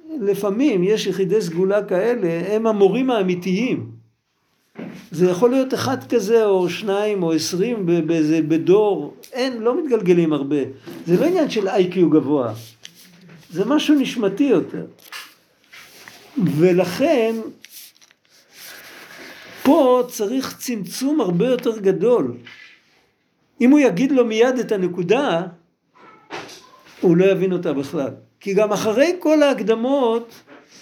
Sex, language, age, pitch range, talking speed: male, Hebrew, 50-69, 165-240 Hz, 110 wpm